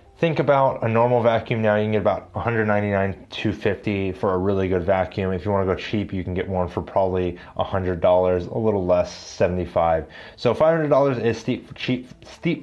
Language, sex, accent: English, male, American